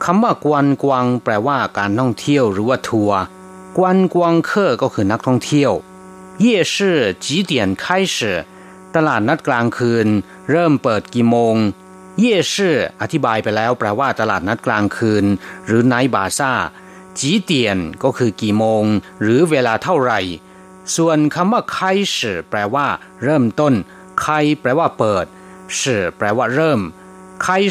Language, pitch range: Thai, 105-170 Hz